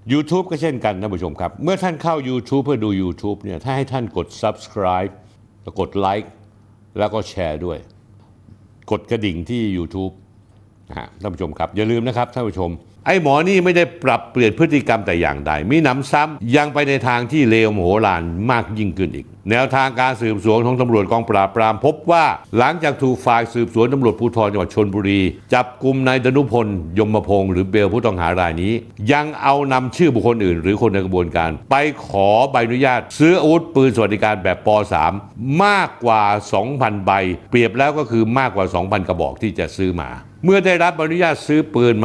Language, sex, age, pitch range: Thai, male, 60-79, 100-130 Hz